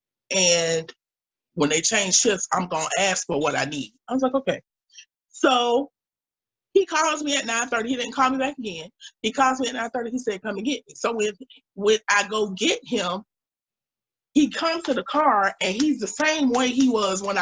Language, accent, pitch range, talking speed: English, American, 205-275 Hz, 210 wpm